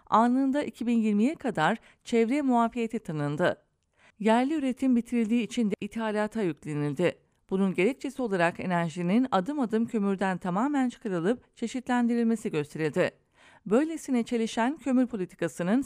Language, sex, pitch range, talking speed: English, female, 180-245 Hz, 105 wpm